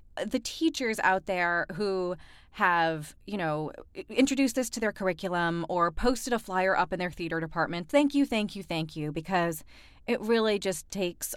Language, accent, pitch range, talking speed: English, American, 180-250 Hz, 175 wpm